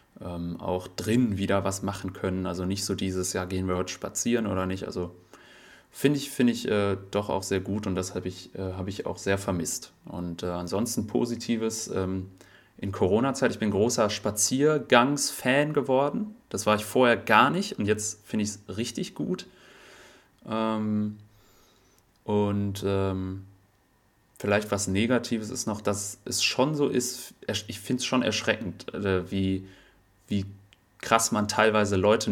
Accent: German